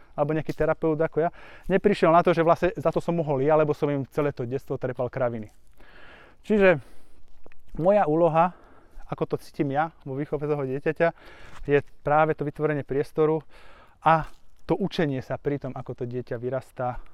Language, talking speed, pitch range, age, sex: Slovak, 170 wpm, 125-155 Hz, 20-39, male